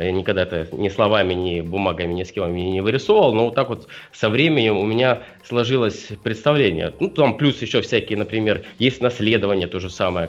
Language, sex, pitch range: Russian, male, 95-125 Hz